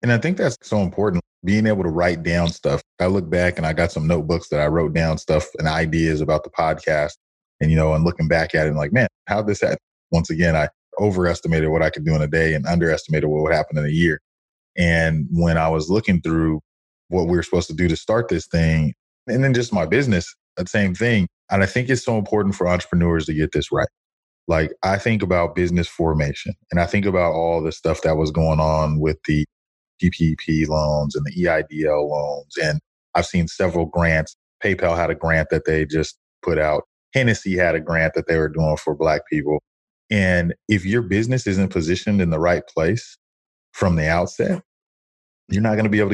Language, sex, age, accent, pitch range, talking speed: English, male, 20-39, American, 80-90 Hz, 220 wpm